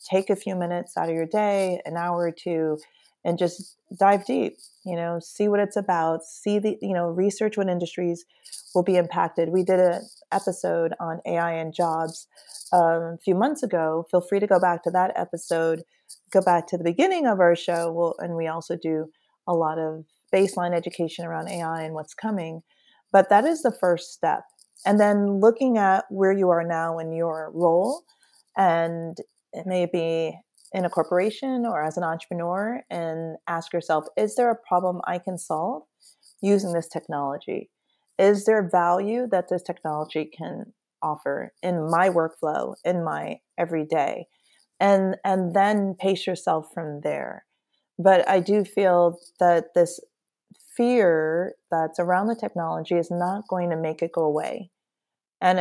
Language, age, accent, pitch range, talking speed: English, 30-49, American, 165-195 Hz, 170 wpm